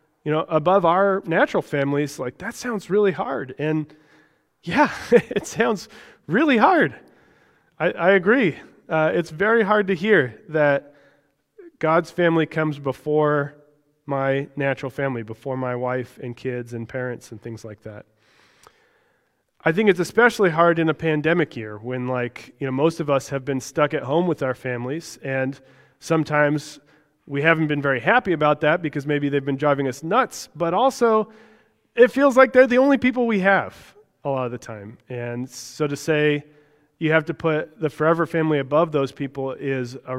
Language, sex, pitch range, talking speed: English, male, 135-175 Hz, 175 wpm